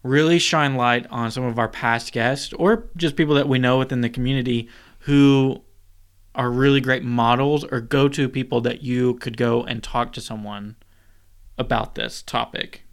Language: English